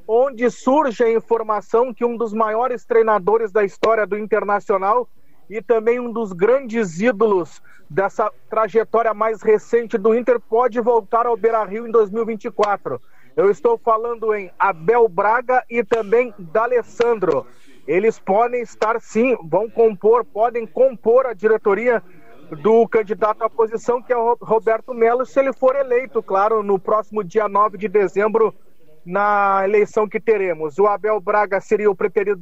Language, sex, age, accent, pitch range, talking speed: Portuguese, male, 40-59, Brazilian, 210-240 Hz, 150 wpm